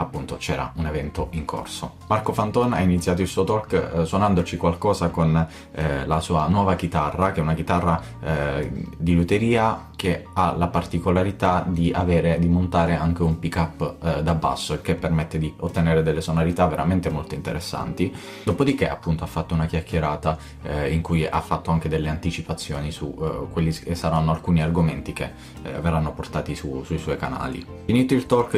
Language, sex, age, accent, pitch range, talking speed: Italian, male, 20-39, native, 80-90 Hz, 180 wpm